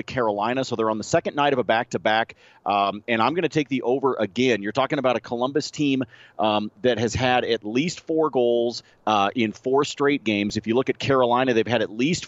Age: 40-59